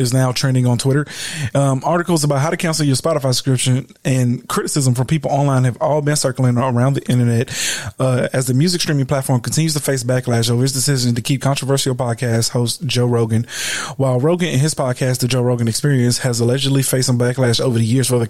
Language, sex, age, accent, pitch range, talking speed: English, male, 20-39, American, 120-140 Hz, 215 wpm